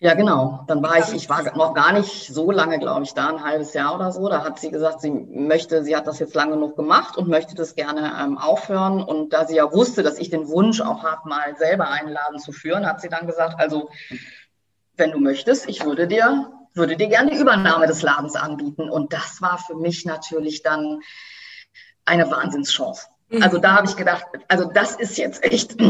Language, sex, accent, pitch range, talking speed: German, female, German, 150-190 Hz, 220 wpm